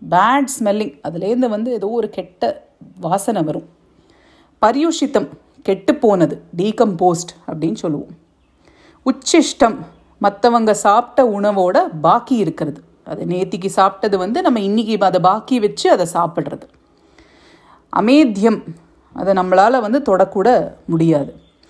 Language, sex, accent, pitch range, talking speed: Tamil, female, native, 180-260 Hz, 110 wpm